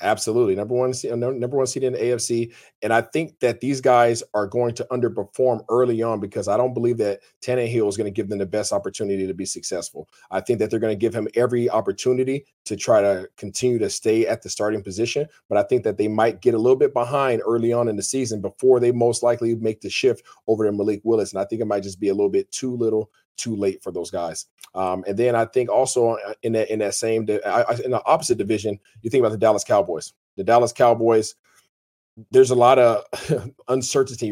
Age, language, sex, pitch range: 40-59, English, male, 105-125 Hz